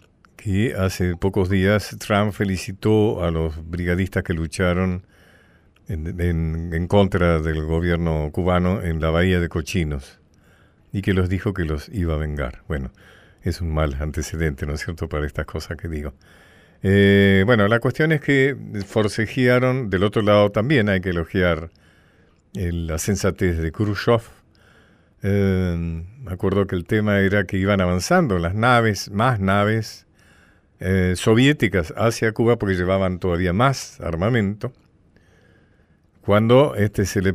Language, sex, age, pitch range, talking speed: Spanish, male, 50-69, 85-105 Hz, 145 wpm